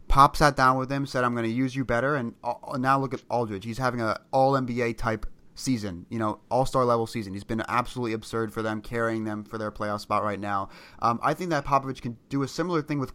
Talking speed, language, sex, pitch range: 240 wpm, English, male, 110-135 Hz